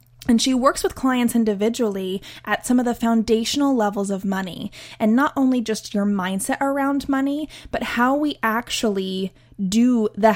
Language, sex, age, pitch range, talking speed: English, female, 20-39, 195-235 Hz, 160 wpm